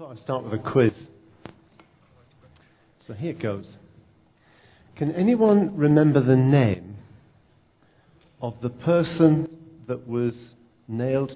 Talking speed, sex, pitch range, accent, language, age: 105 wpm, male, 115-160 Hz, British, English, 50-69